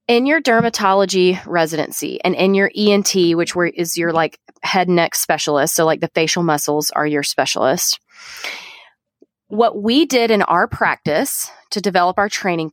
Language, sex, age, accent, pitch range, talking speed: English, female, 30-49, American, 175-225 Hz, 160 wpm